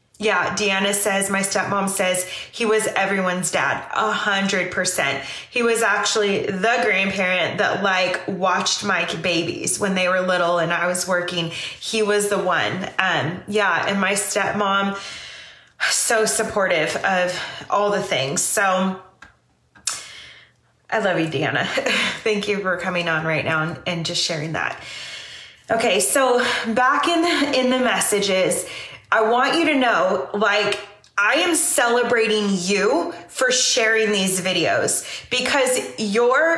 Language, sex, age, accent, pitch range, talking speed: English, female, 20-39, American, 195-255 Hz, 135 wpm